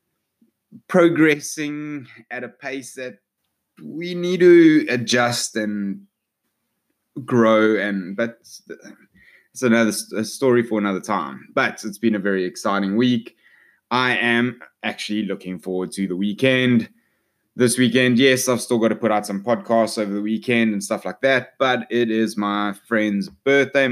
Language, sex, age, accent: English, male, 20-39, Australian